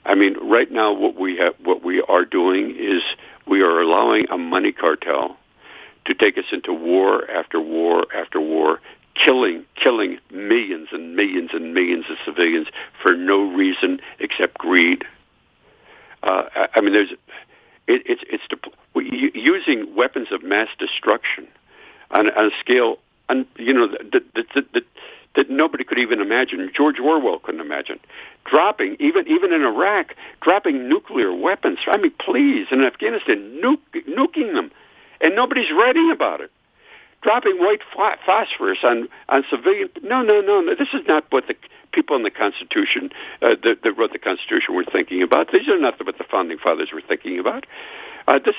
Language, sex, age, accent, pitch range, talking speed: English, male, 60-79, American, 320-420 Hz, 170 wpm